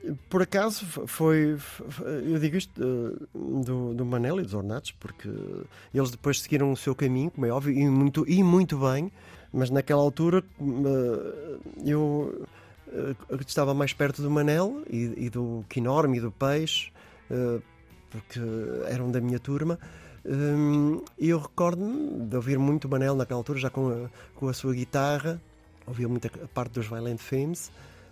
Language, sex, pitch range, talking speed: Portuguese, male, 125-160 Hz, 160 wpm